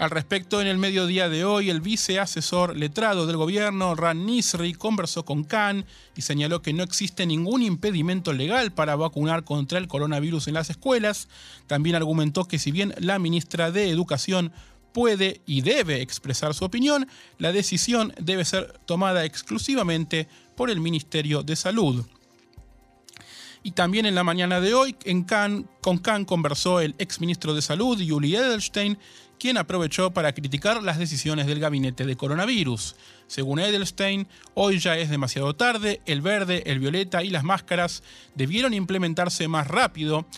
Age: 30-49